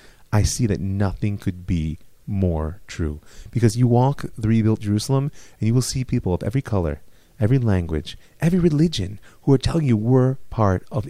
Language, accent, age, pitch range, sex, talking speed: English, American, 30-49, 105-135 Hz, male, 180 wpm